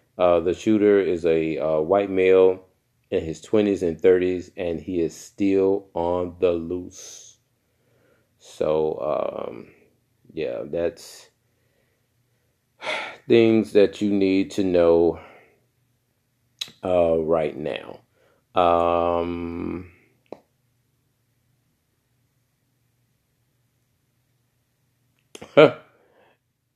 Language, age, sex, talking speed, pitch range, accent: English, 40-59, male, 80 wpm, 95-125 Hz, American